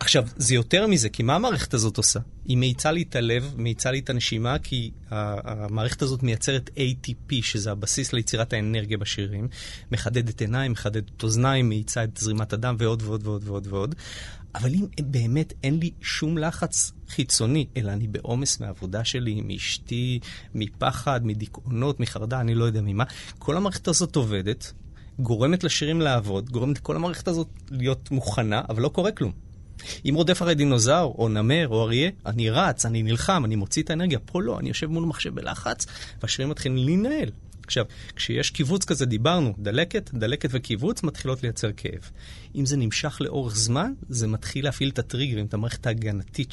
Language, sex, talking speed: Hebrew, male, 160 wpm